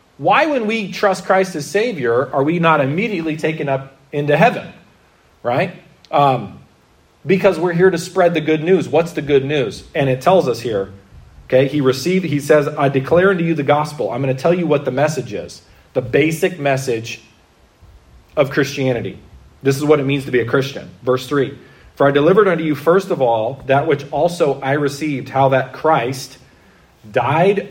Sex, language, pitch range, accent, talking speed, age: male, English, 130-165 Hz, American, 190 wpm, 40-59